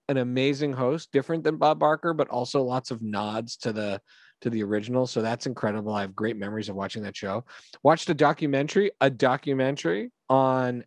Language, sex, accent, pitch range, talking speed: English, male, American, 105-135 Hz, 190 wpm